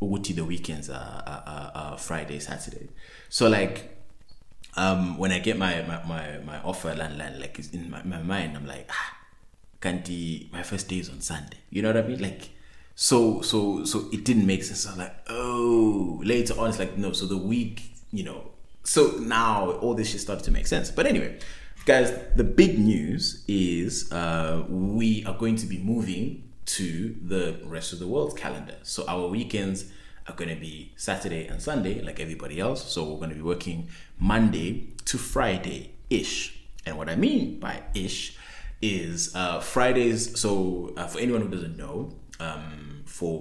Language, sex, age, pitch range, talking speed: English, male, 20-39, 80-105 Hz, 185 wpm